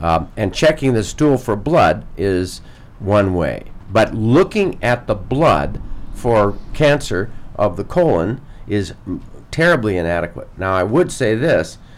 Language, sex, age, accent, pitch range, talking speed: English, male, 50-69, American, 90-115 Hz, 145 wpm